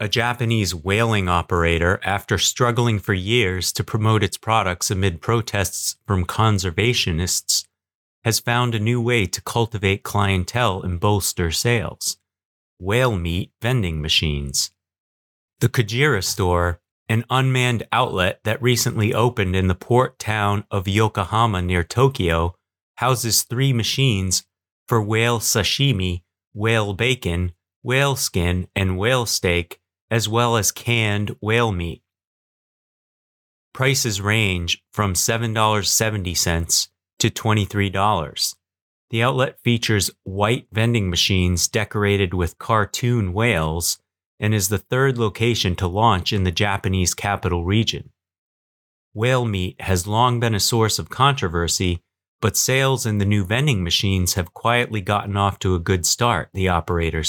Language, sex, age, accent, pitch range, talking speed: English, male, 30-49, American, 90-115 Hz, 125 wpm